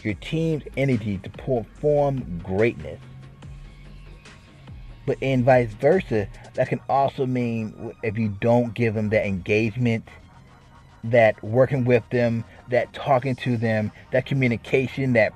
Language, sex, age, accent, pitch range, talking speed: English, male, 30-49, American, 95-125 Hz, 125 wpm